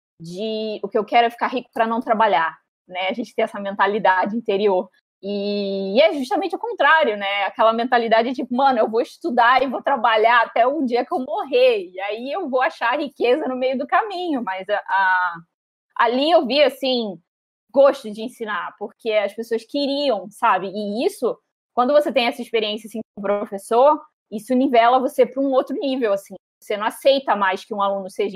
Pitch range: 205-265 Hz